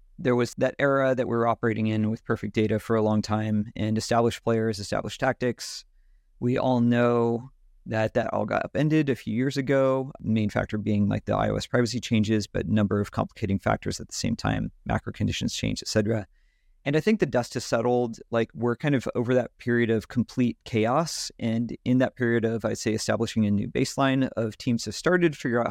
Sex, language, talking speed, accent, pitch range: male, English, 210 wpm, American, 105-125 Hz